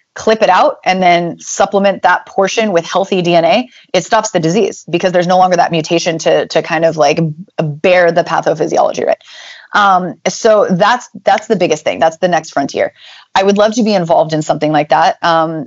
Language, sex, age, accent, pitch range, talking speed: English, female, 30-49, American, 170-215 Hz, 200 wpm